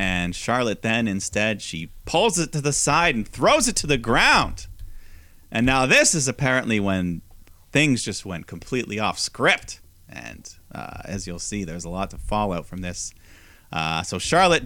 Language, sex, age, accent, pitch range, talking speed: English, male, 30-49, American, 85-115 Hz, 175 wpm